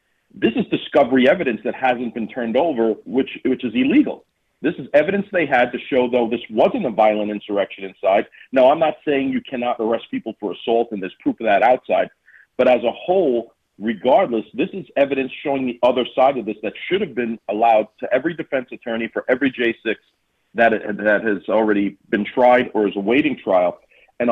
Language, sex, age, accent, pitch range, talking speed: English, male, 40-59, American, 115-150 Hz, 195 wpm